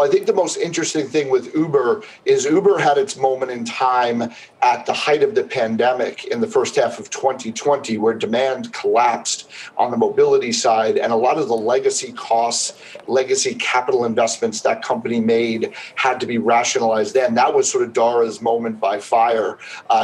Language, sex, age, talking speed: English, male, 40-59, 185 wpm